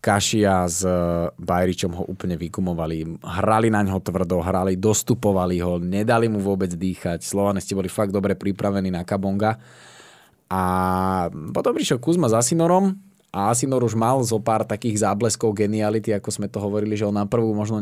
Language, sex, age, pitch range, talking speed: Slovak, male, 20-39, 95-115 Hz, 165 wpm